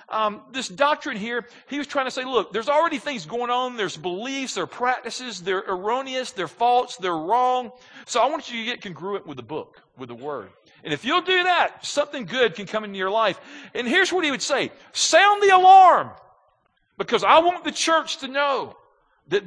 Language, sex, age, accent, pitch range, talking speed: English, male, 50-69, American, 225-290 Hz, 210 wpm